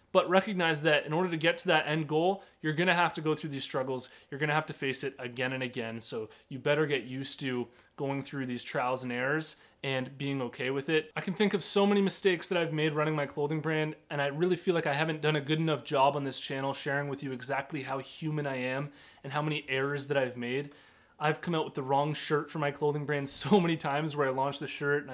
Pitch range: 130-155 Hz